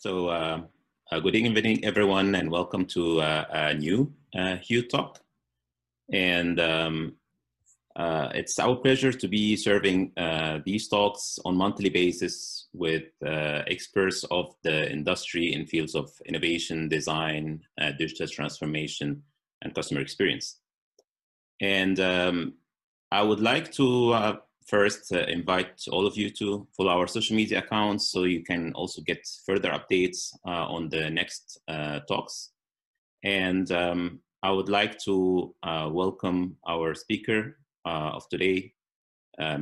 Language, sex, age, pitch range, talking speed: Arabic, male, 30-49, 80-100 Hz, 140 wpm